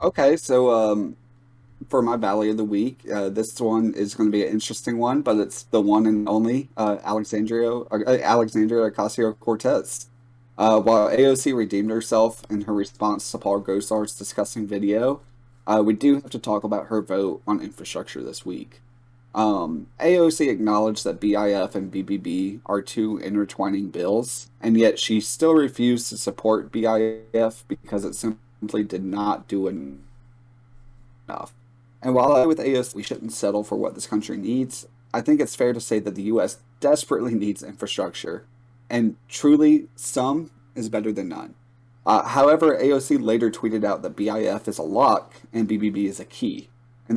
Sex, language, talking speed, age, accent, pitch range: male, English, 170 wpm, 30-49, American, 105-120 Hz